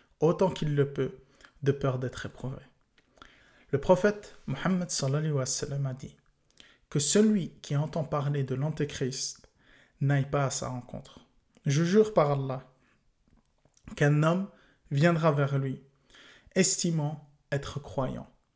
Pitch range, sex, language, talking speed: 135-160 Hz, male, English, 135 wpm